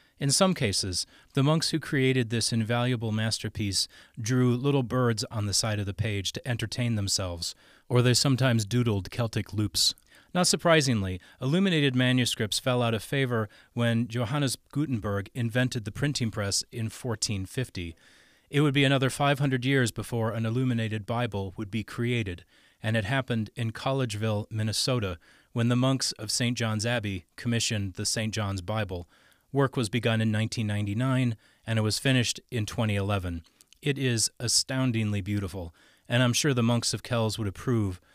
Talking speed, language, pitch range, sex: 155 wpm, English, 105-130 Hz, male